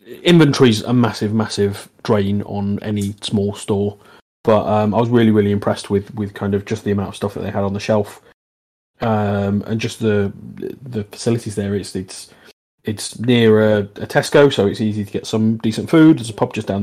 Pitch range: 100-120 Hz